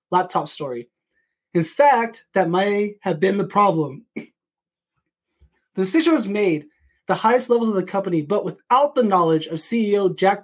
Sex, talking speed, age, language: male, 155 wpm, 20-39, English